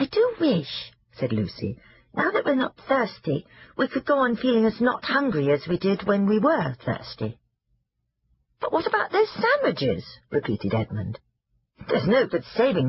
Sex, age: female, 50-69